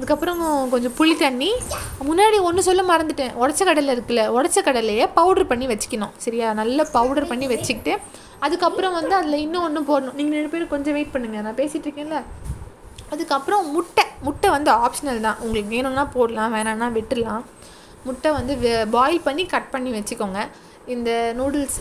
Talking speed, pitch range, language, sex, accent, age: 150 wpm, 235-300 Hz, Tamil, female, native, 20-39